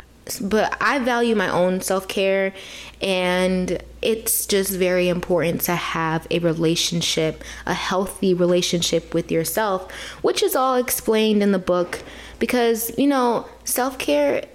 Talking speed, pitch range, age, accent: 130 wpm, 180-225 Hz, 20-39, American